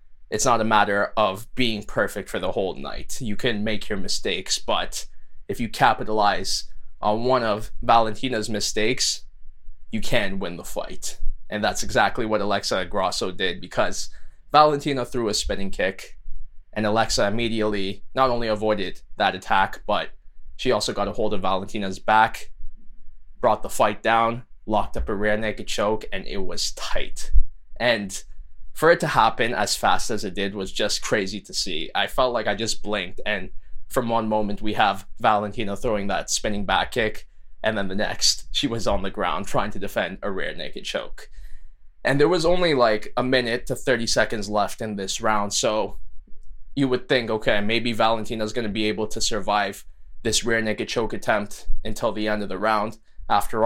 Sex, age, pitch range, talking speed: male, 20-39, 95-115 Hz, 180 wpm